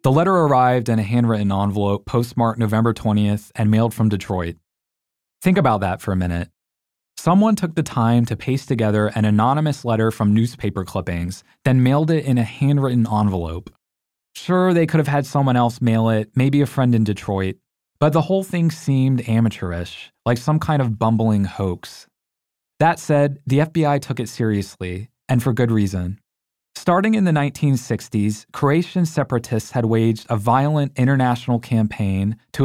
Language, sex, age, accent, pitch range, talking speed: English, male, 20-39, American, 105-135 Hz, 165 wpm